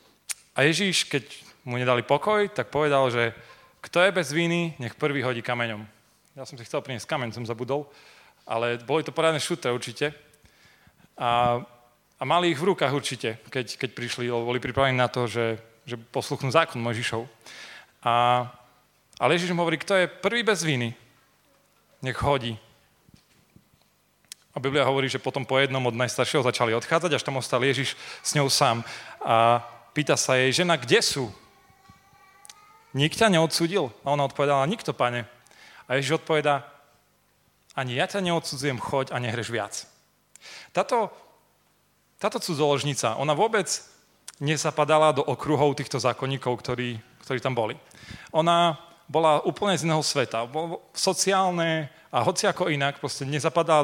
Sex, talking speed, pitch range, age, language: male, 145 wpm, 125-160 Hz, 30-49, Slovak